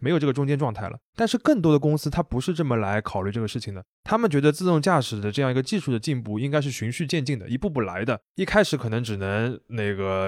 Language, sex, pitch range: Chinese, male, 115-150 Hz